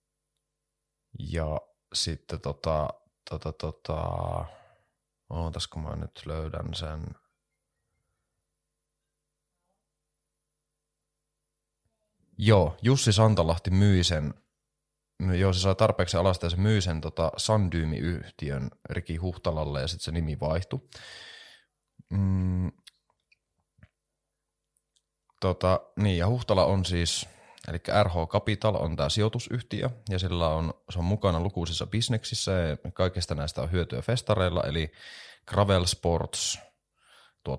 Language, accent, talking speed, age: Finnish, native, 95 wpm, 30-49